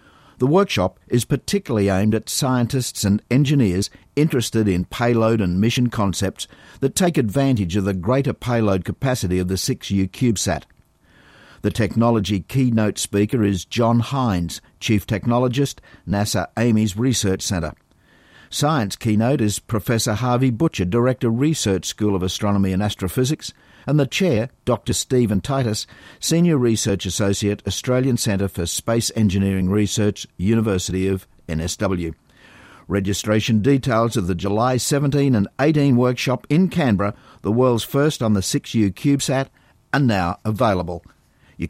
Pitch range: 100-130 Hz